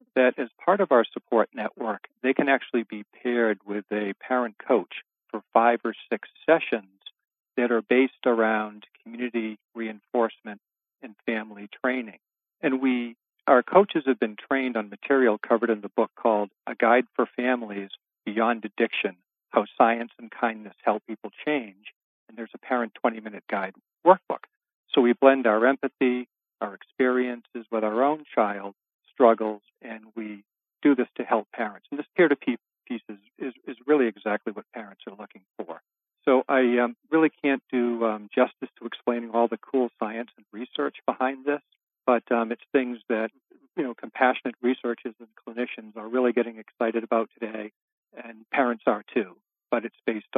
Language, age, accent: English, 50-69, American